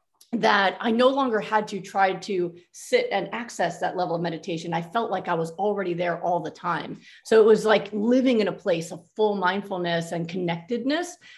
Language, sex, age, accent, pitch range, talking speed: English, female, 30-49, American, 190-250 Hz, 200 wpm